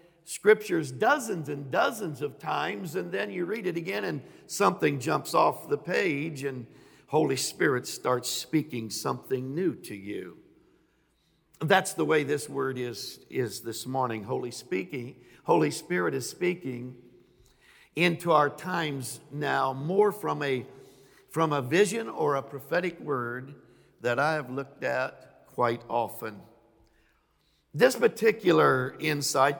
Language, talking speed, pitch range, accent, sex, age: English, 135 wpm, 130-170 Hz, American, male, 60-79